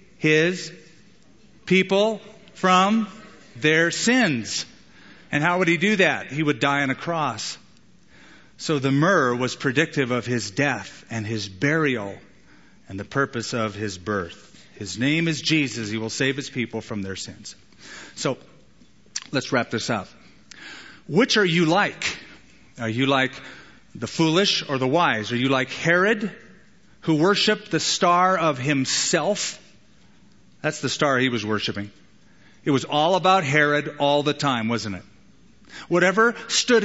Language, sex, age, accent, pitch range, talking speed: English, male, 40-59, American, 125-175 Hz, 150 wpm